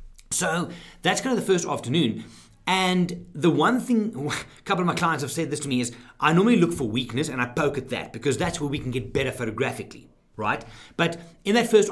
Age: 30-49